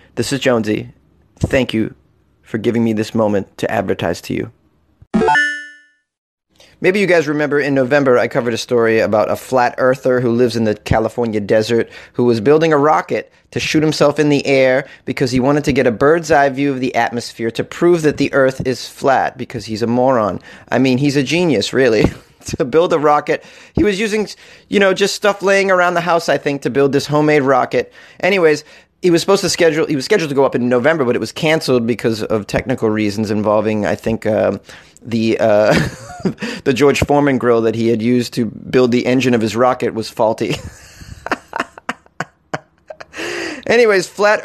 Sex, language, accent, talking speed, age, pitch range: male, English, American, 195 wpm, 30-49, 120-160 Hz